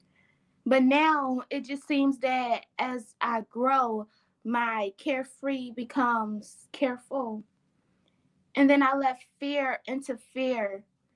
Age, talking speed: 10-29, 110 wpm